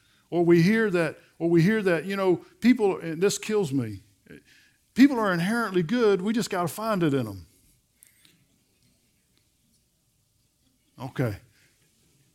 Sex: male